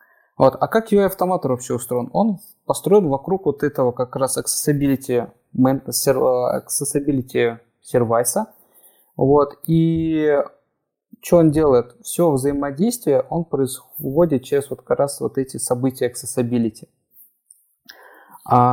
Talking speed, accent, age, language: 105 wpm, native, 20-39, Russian